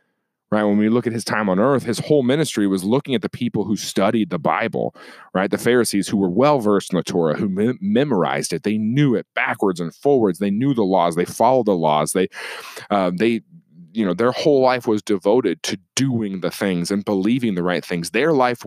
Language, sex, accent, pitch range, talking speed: English, male, American, 95-145 Hz, 225 wpm